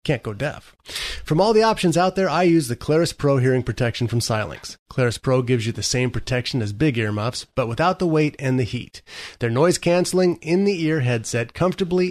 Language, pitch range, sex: English, 120-155 Hz, male